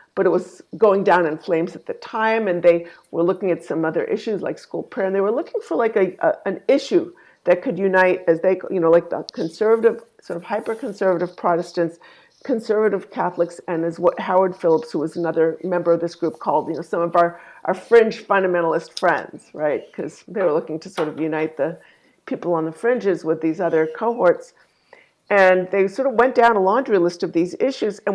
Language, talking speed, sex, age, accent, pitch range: English, 215 wpm, female, 50-69, American, 170-215 Hz